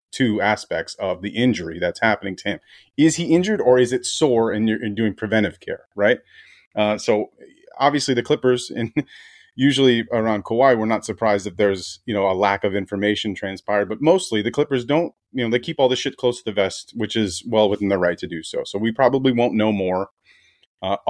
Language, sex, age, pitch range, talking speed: English, male, 30-49, 100-120 Hz, 215 wpm